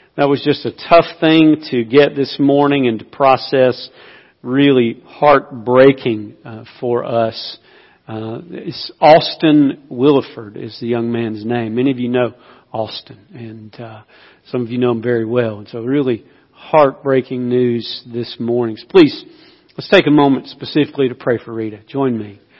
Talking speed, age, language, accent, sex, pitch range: 160 wpm, 50-69, English, American, male, 115-140 Hz